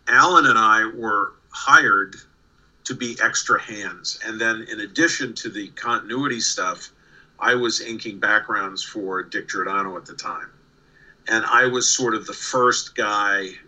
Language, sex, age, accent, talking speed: English, male, 50-69, American, 155 wpm